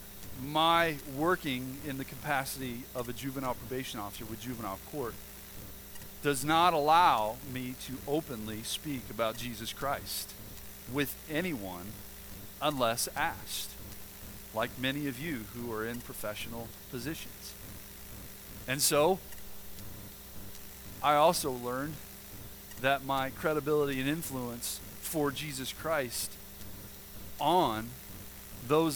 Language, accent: English, American